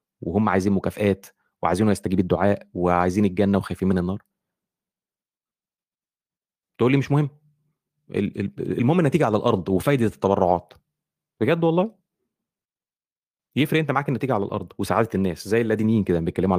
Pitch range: 95-130 Hz